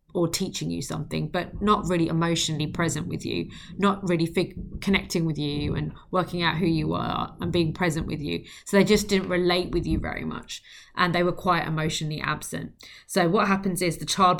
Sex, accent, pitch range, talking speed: female, British, 165-195 Hz, 200 wpm